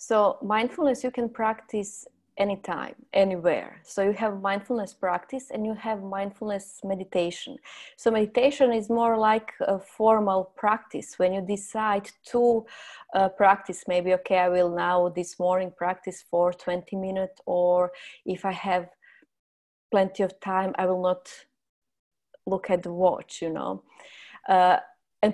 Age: 20-39